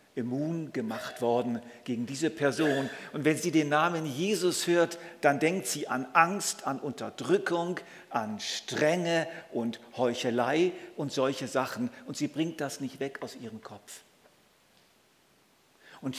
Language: German